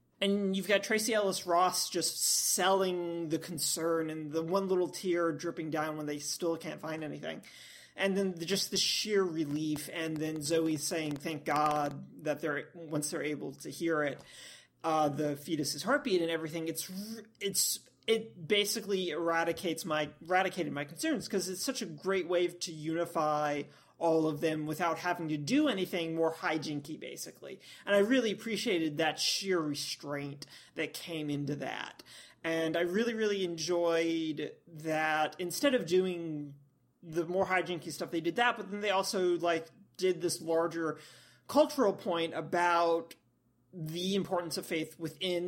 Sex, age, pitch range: male, 30-49, 155-185 Hz